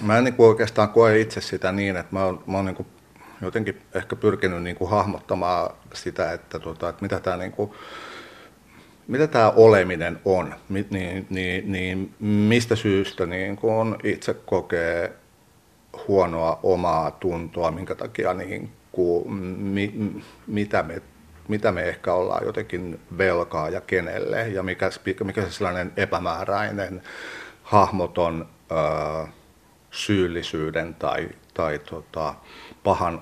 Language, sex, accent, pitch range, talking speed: Finnish, male, native, 90-110 Hz, 90 wpm